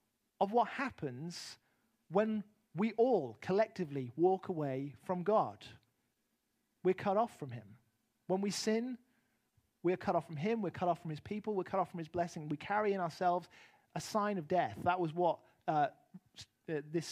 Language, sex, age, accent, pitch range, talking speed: English, male, 40-59, British, 150-220 Hz, 175 wpm